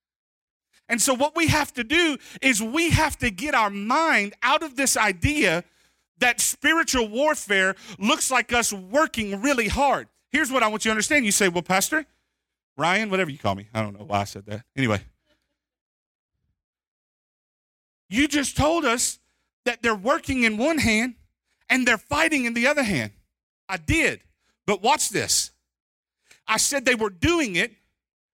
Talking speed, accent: 165 wpm, American